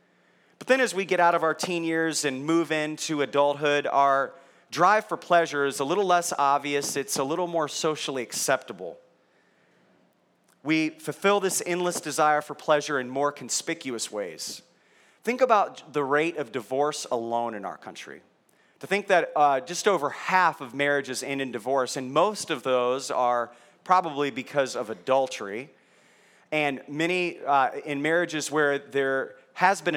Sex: male